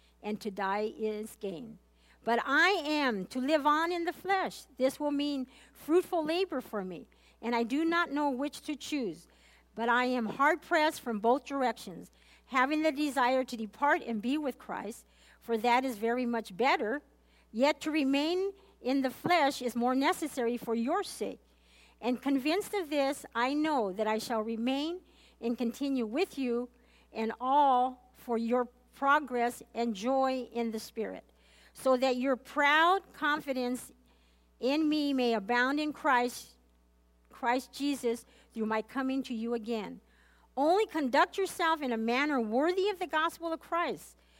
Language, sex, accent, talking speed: English, female, American, 160 wpm